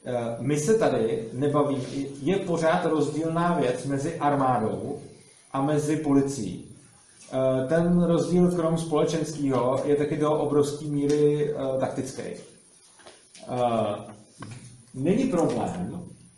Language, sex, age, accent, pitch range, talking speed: Czech, male, 40-59, native, 130-160 Hz, 90 wpm